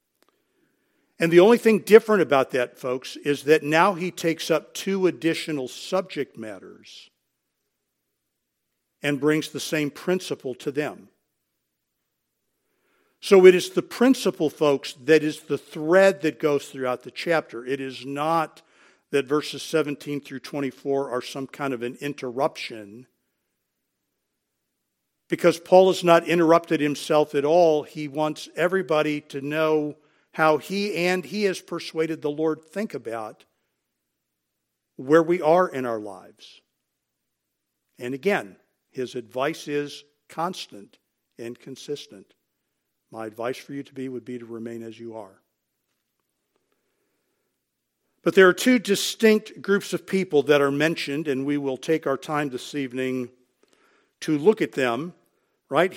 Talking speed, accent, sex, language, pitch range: 135 wpm, American, male, English, 135-170 Hz